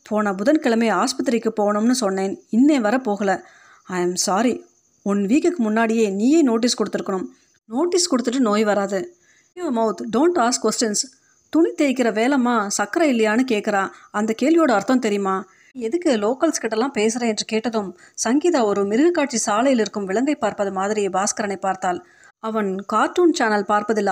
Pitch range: 205-270 Hz